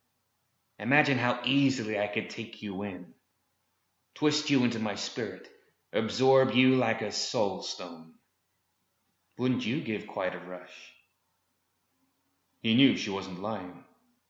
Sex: male